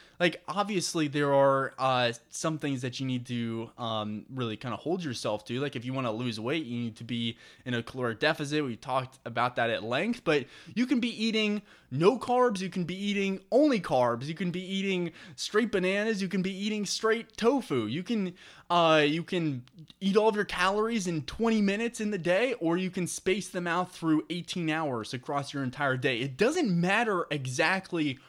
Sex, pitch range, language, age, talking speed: male, 130-190 Hz, English, 20-39, 205 wpm